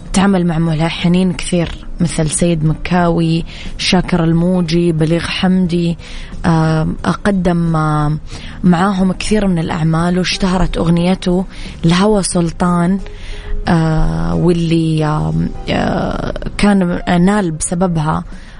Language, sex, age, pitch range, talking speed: Arabic, female, 20-39, 160-180 Hz, 75 wpm